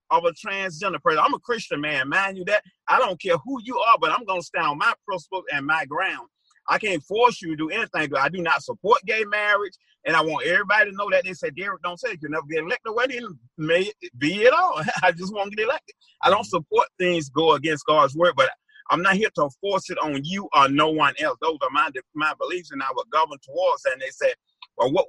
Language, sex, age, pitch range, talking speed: English, male, 30-49, 155-220 Hz, 260 wpm